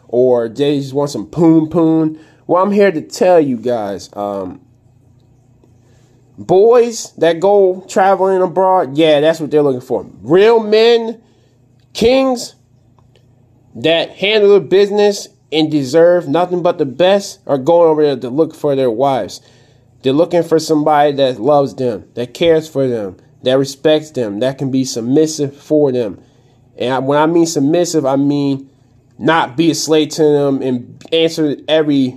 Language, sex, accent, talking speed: English, male, American, 155 wpm